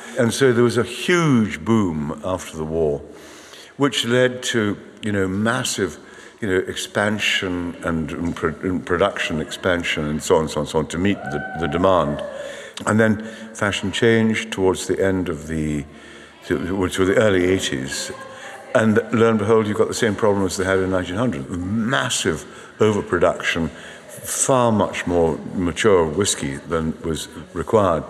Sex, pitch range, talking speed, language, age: male, 80-110 Hz, 155 wpm, English, 60-79